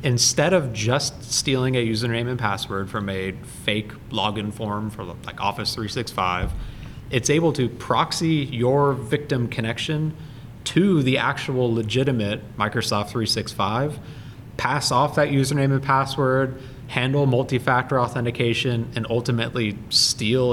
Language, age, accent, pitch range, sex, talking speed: English, 30-49, American, 110-135 Hz, male, 120 wpm